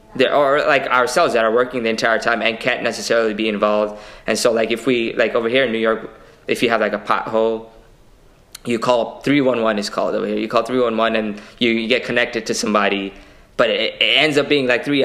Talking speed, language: 225 wpm, English